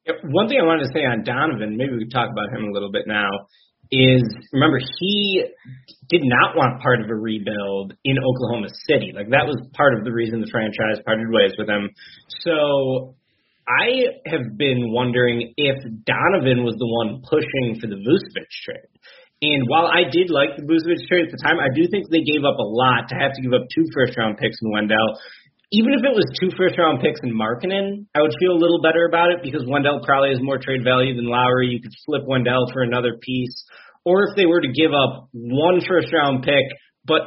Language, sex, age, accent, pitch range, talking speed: English, male, 30-49, American, 120-160 Hz, 215 wpm